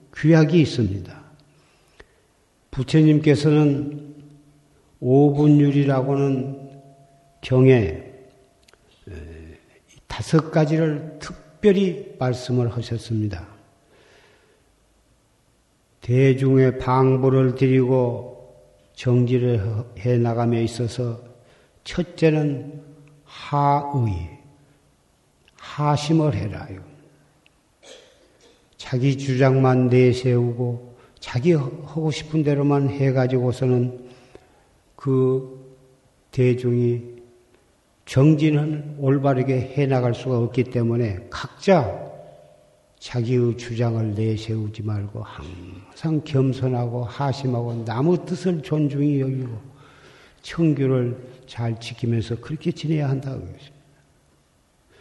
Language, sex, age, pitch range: Korean, male, 50-69, 120-145 Hz